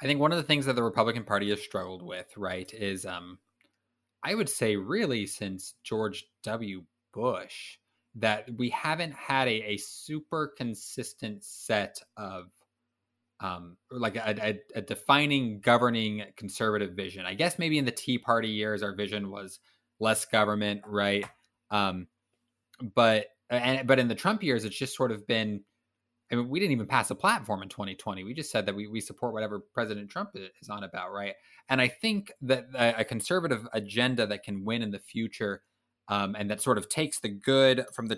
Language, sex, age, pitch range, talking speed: English, male, 20-39, 105-125 Hz, 180 wpm